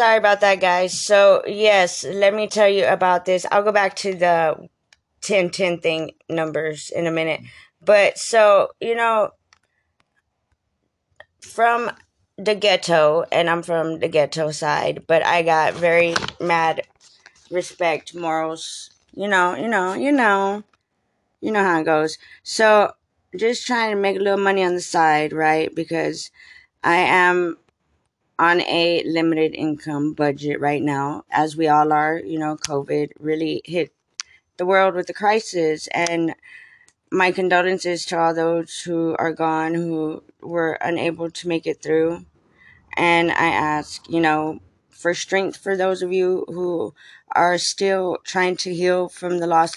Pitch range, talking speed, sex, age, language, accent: 160-195 Hz, 155 wpm, female, 20-39, English, American